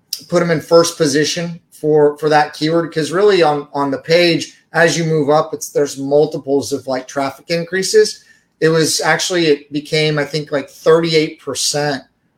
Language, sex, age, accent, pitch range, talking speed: English, male, 30-49, American, 145-160 Hz, 175 wpm